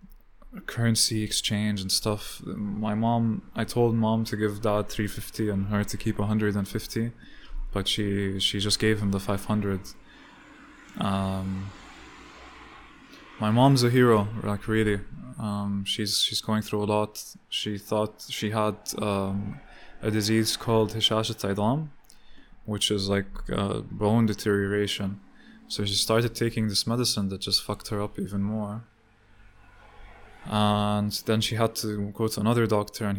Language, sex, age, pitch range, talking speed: English, male, 20-39, 100-110 Hz, 145 wpm